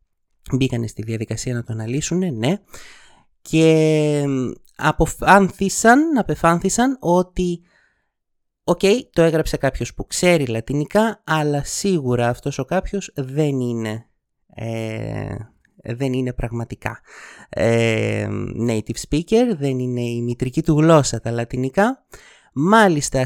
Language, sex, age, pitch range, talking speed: Greek, male, 30-49, 120-180 Hz, 105 wpm